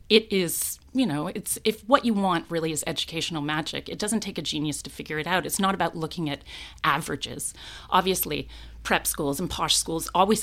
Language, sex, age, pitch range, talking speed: English, female, 30-49, 150-190 Hz, 200 wpm